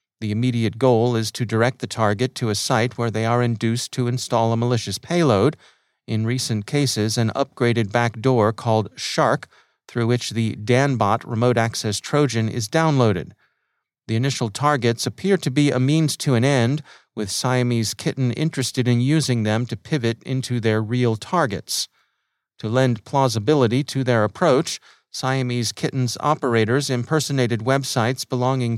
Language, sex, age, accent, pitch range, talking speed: English, male, 40-59, American, 115-140 Hz, 150 wpm